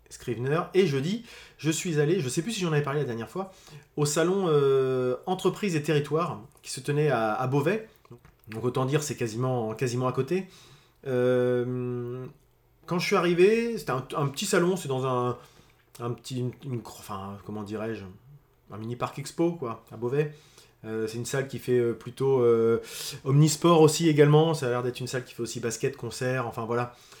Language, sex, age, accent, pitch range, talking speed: French, male, 20-39, French, 120-155 Hz, 190 wpm